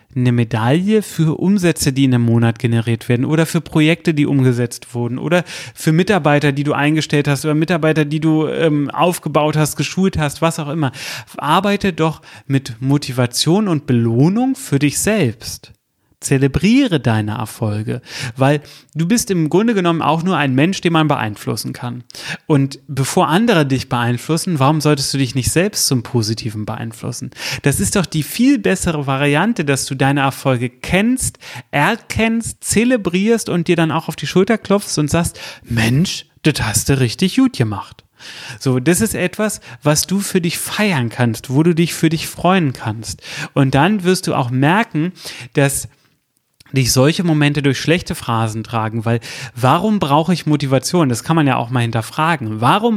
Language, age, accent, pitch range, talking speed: German, 30-49, German, 130-175 Hz, 170 wpm